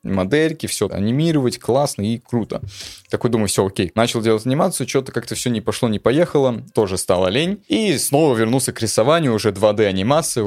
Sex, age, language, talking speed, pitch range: male, 20-39, Russian, 180 wpm, 100-135 Hz